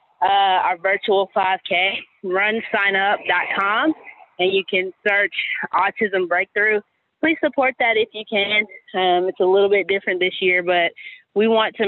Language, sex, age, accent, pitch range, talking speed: English, female, 20-39, American, 185-230 Hz, 145 wpm